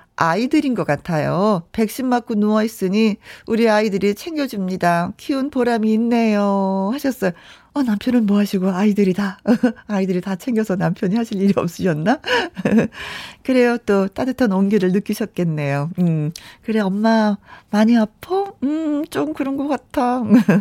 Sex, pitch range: female, 175-250 Hz